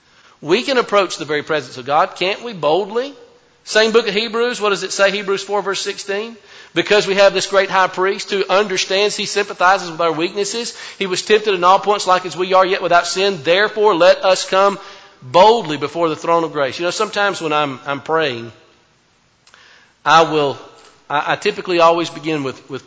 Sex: male